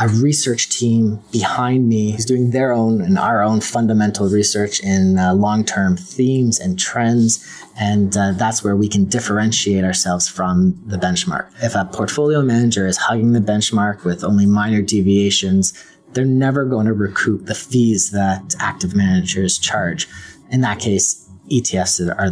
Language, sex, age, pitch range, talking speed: English, male, 30-49, 95-120 Hz, 160 wpm